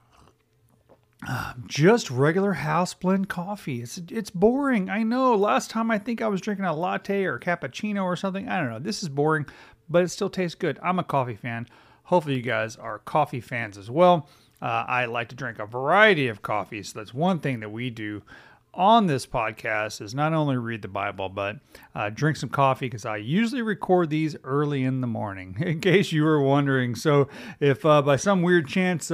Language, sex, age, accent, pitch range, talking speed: English, male, 40-59, American, 125-180 Hz, 205 wpm